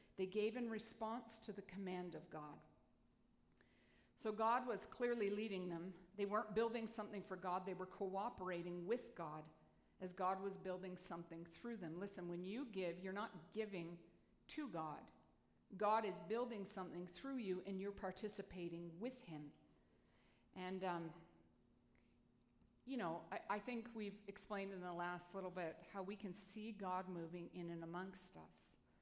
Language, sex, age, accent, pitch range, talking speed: English, female, 50-69, American, 180-215 Hz, 160 wpm